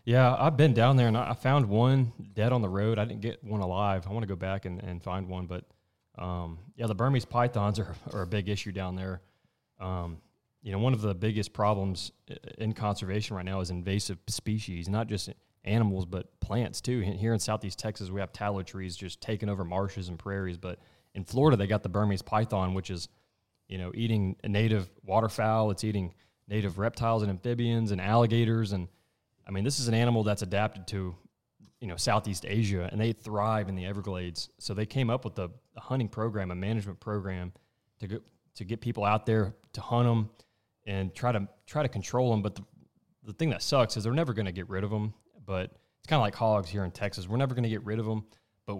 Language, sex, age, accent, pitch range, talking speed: English, male, 20-39, American, 95-115 Hz, 220 wpm